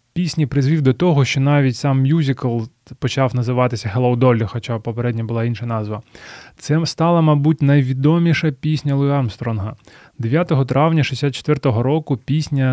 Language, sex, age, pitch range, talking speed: Ukrainian, male, 20-39, 125-145 Hz, 135 wpm